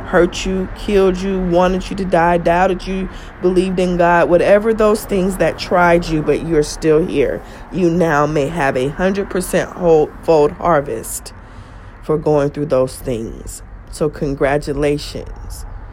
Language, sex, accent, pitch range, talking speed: English, female, American, 150-190 Hz, 150 wpm